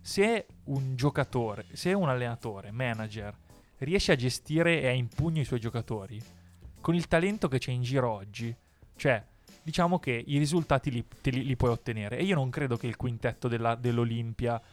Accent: native